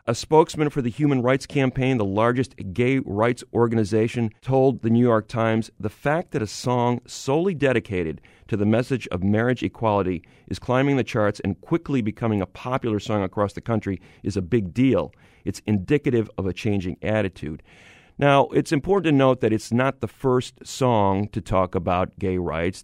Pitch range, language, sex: 95-130 Hz, English, male